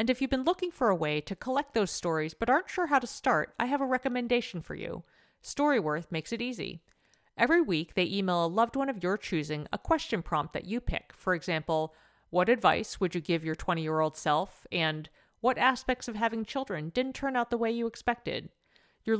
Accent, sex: American, female